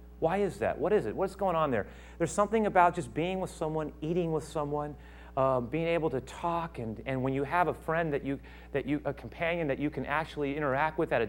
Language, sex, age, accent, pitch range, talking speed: English, male, 40-59, American, 150-225 Hz, 245 wpm